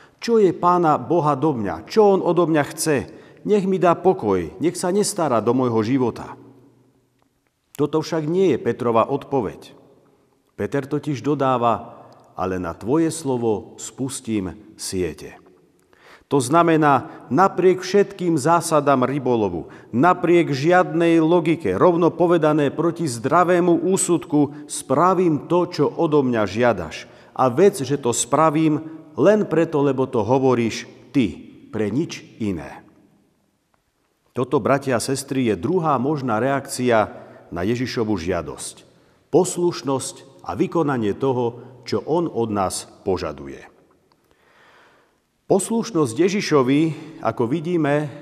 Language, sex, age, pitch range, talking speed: Slovak, male, 50-69, 125-165 Hz, 115 wpm